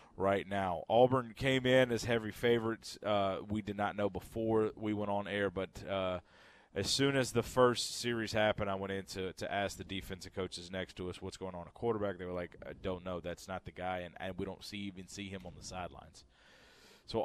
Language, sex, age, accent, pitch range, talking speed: English, male, 30-49, American, 100-130 Hz, 230 wpm